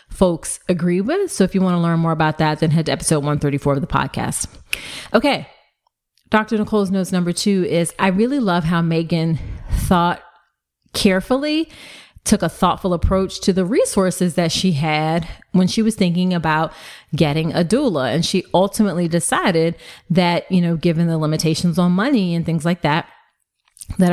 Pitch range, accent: 160-200 Hz, American